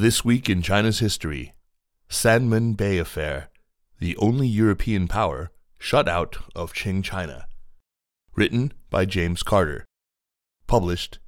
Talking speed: 115 wpm